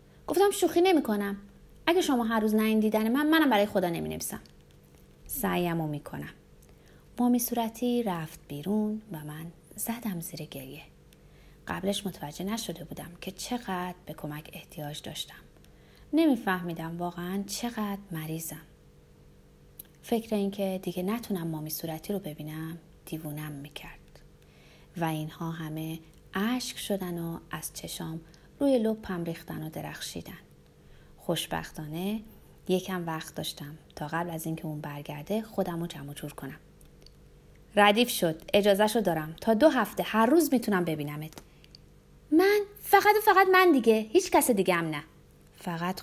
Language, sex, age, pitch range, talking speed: Persian, female, 30-49, 160-220 Hz, 135 wpm